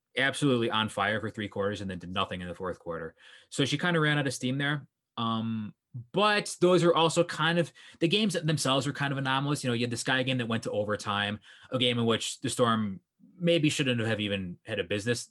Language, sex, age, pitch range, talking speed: English, male, 20-39, 115-165 Hz, 240 wpm